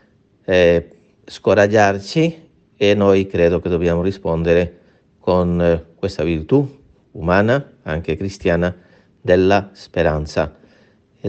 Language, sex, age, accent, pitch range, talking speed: Italian, male, 40-59, native, 85-105 Hz, 85 wpm